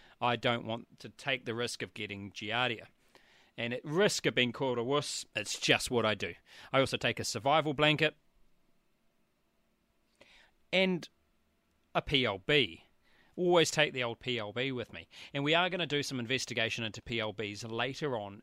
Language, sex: English, male